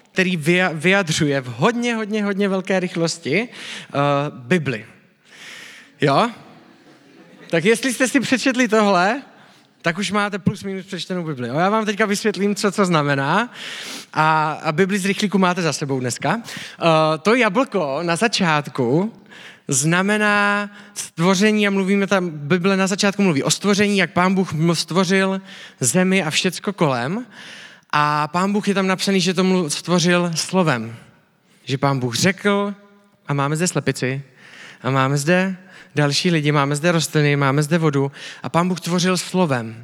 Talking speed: 150 wpm